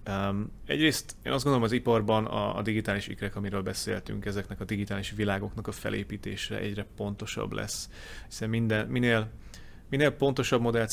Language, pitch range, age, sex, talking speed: Hungarian, 100-110 Hz, 30-49, male, 150 wpm